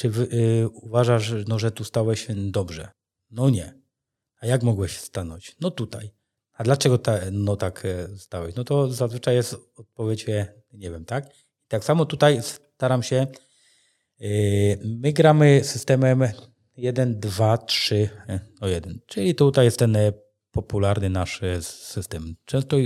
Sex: male